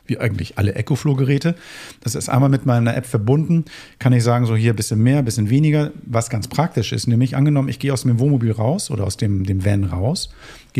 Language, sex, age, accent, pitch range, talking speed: German, male, 50-69, German, 115-145 Hz, 235 wpm